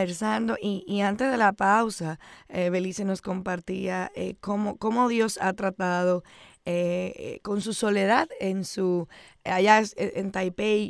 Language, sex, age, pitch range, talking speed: Spanish, female, 20-39, 190-220 Hz, 140 wpm